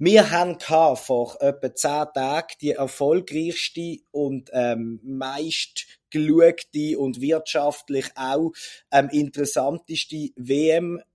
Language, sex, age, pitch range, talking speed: German, male, 30-49, 125-160 Hz, 95 wpm